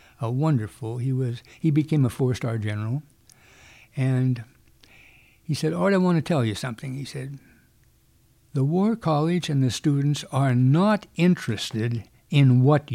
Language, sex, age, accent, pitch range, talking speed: English, male, 60-79, American, 125-170 Hz, 155 wpm